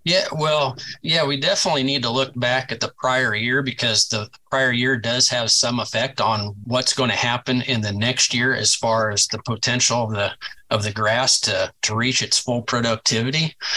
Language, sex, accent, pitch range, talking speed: English, male, American, 115-130 Hz, 200 wpm